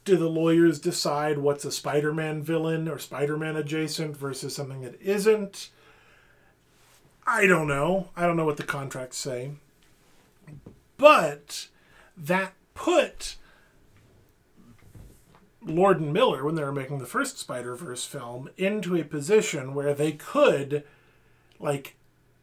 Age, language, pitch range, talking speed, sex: 30-49, English, 140-175 Hz, 125 wpm, male